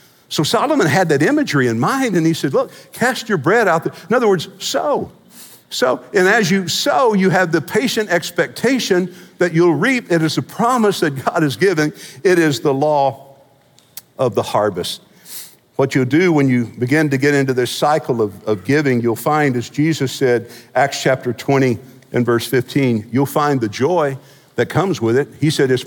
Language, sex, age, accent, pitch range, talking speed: English, male, 50-69, American, 125-155 Hz, 195 wpm